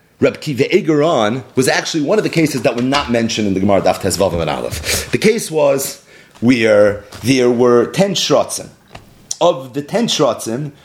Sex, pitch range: male, 130-195 Hz